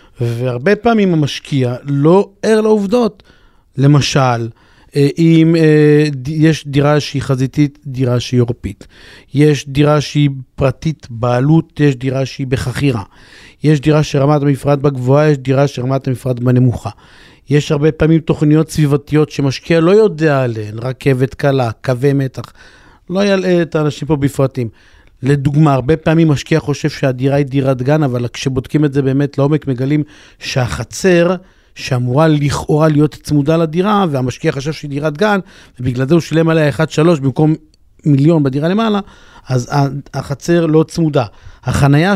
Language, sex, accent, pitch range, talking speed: Hebrew, male, native, 135-160 Hz, 135 wpm